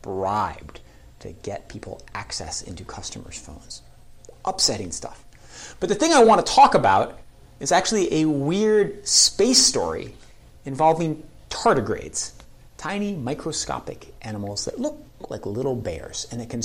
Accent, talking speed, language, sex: American, 135 wpm, English, male